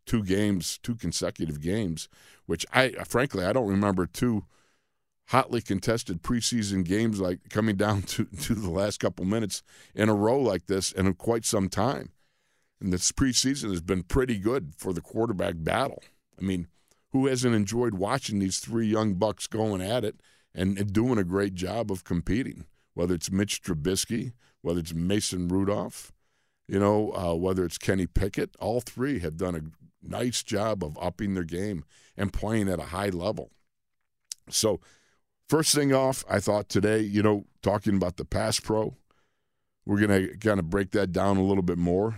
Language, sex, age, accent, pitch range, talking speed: English, male, 50-69, American, 90-110 Hz, 175 wpm